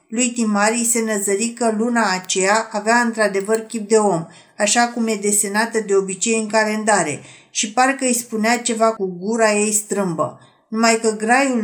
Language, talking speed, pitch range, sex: Romanian, 165 wpm, 195-235 Hz, female